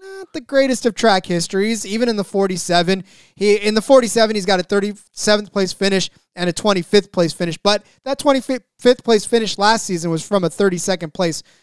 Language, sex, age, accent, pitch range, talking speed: English, male, 20-39, American, 175-220 Hz, 185 wpm